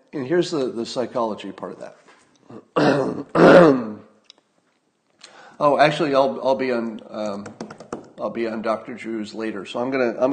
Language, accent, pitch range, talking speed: English, American, 110-135 Hz, 145 wpm